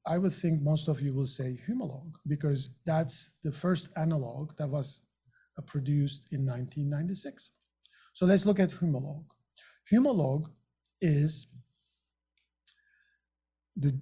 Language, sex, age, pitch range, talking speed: English, male, 50-69, 145-185 Hz, 115 wpm